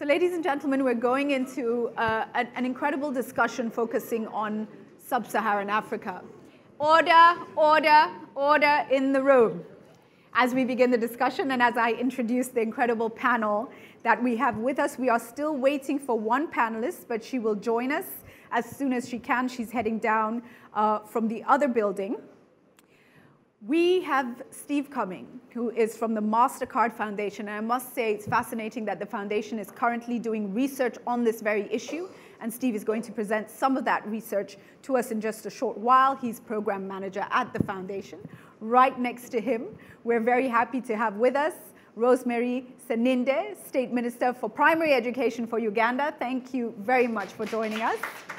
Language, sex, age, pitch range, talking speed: English, female, 30-49, 220-260 Hz, 175 wpm